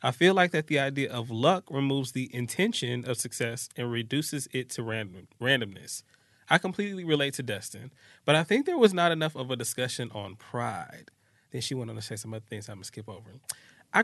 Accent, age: American, 20-39